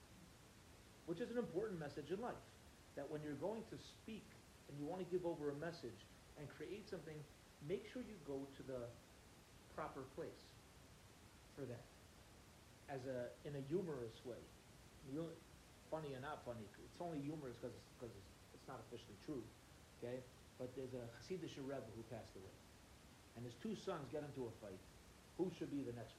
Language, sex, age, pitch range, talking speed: English, male, 40-59, 115-155 Hz, 175 wpm